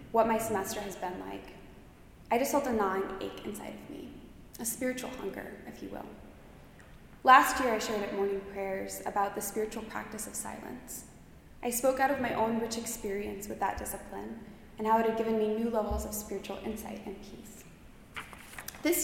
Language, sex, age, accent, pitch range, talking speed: English, female, 20-39, American, 200-235 Hz, 185 wpm